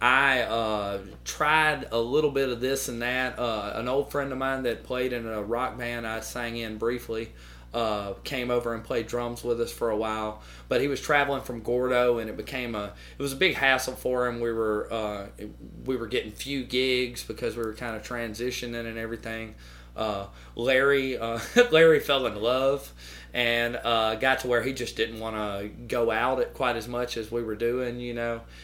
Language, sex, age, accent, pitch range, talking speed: English, male, 30-49, American, 110-125 Hz, 205 wpm